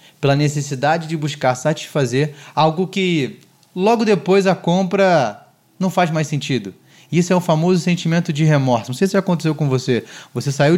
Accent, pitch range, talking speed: Brazilian, 135-175 Hz, 165 wpm